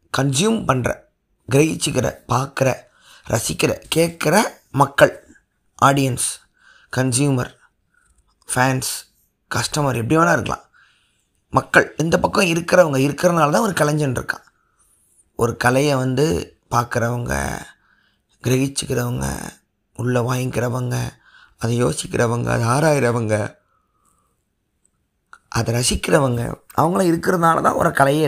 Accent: native